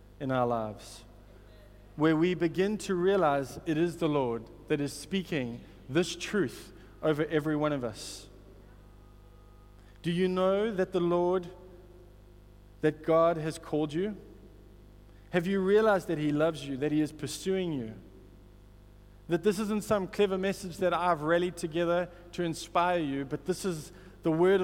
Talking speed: 155 wpm